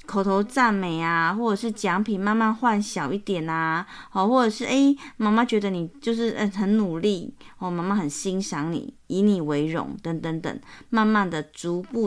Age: 30-49